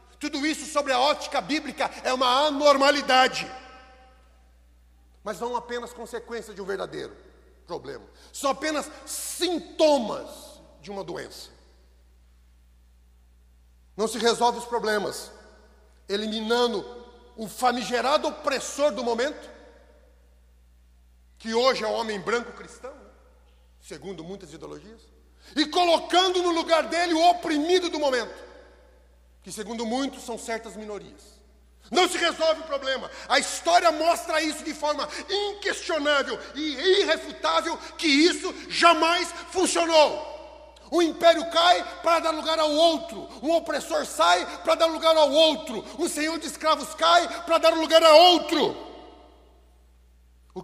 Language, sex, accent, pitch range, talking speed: Portuguese, male, Brazilian, 230-325 Hz, 125 wpm